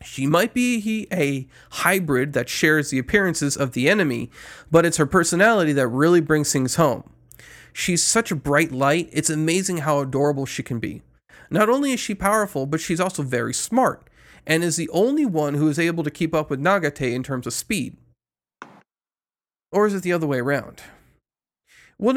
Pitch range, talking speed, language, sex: 140-185 Hz, 185 wpm, English, male